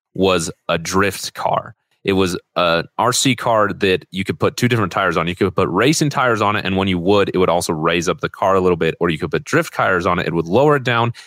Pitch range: 90-115 Hz